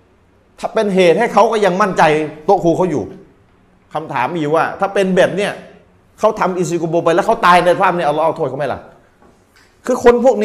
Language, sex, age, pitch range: Thai, male, 30-49, 135-180 Hz